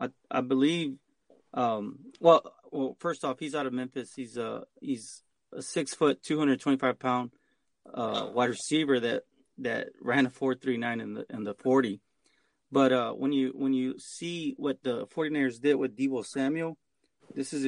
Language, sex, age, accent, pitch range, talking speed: English, male, 30-49, American, 125-140 Hz, 185 wpm